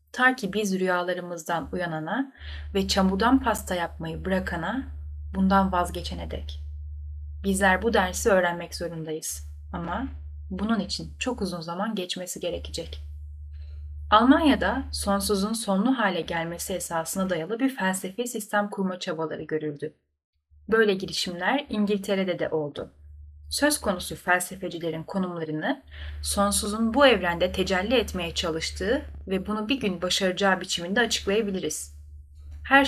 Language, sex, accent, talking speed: Turkish, female, native, 115 wpm